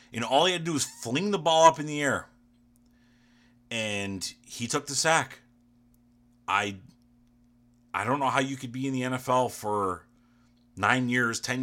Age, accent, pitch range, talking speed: 30-49, American, 115-125 Hz, 175 wpm